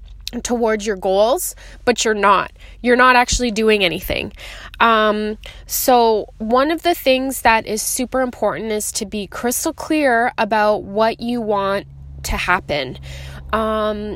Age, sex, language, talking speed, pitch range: 20-39, female, English, 140 wpm, 210-260 Hz